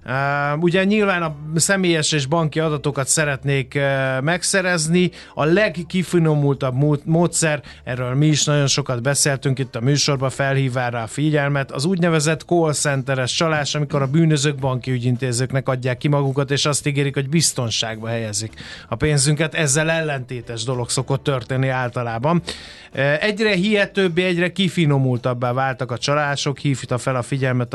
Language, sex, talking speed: Hungarian, male, 145 wpm